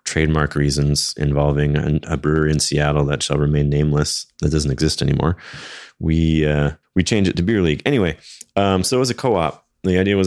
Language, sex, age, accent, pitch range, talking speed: English, male, 30-49, American, 75-90 Hz, 200 wpm